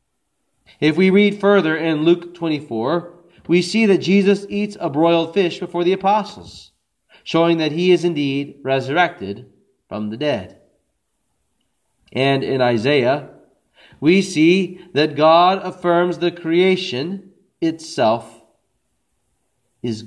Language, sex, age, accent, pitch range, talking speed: English, male, 40-59, American, 150-200 Hz, 115 wpm